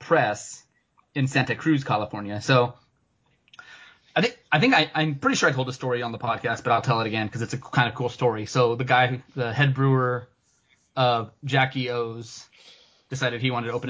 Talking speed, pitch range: 205 wpm, 115-135 Hz